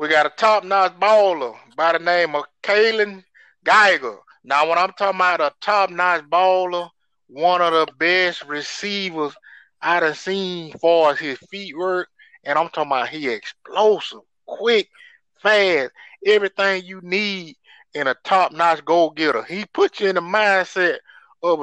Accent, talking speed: American, 155 wpm